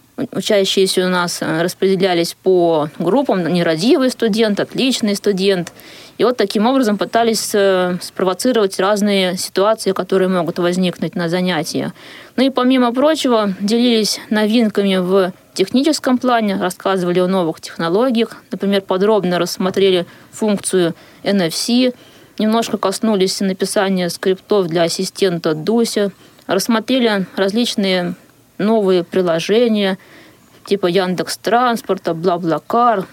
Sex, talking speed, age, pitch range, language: female, 100 wpm, 20-39, 180-215 Hz, Russian